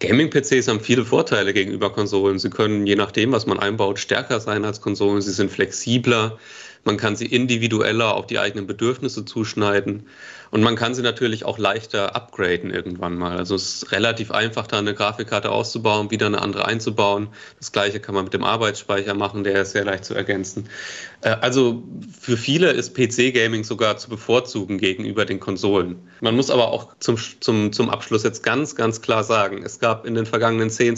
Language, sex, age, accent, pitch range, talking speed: German, male, 30-49, German, 100-120 Hz, 180 wpm